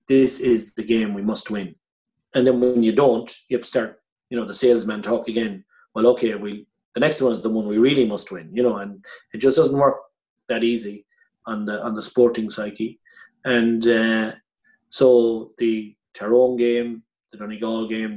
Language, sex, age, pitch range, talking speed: English, male, 30-49, 110-125 Hz, 195 wpm